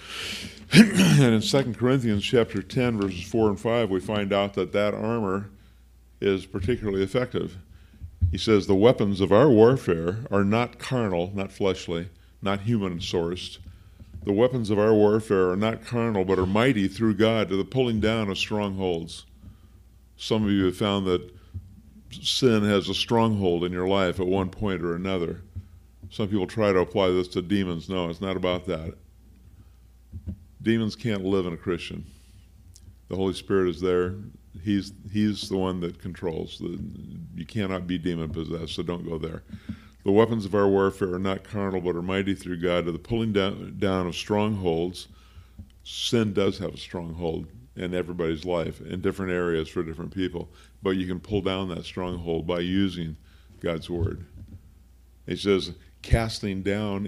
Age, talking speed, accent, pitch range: 50-69, 165 wpm, American, 90-105 Hz